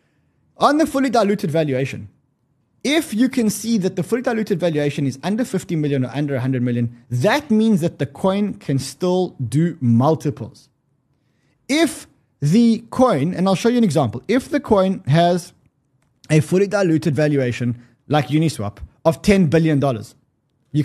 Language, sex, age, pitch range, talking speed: English, male, 20-39, 135-200 Hz, 155 wpm